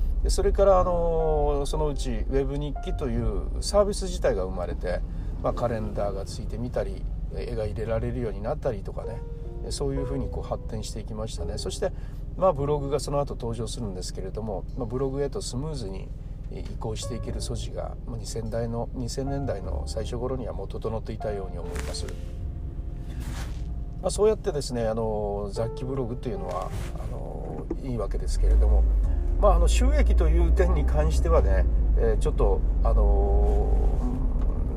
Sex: male